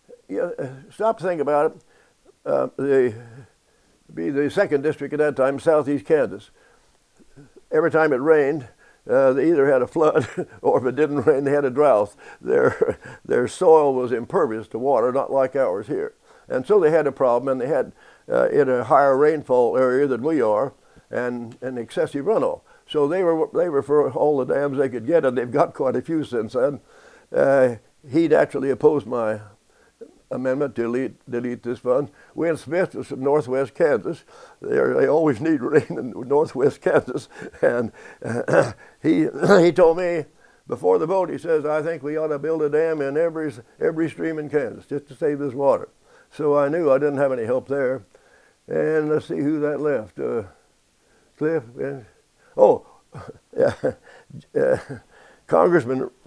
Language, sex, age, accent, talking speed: English, male, 60-79, American, 180 wpm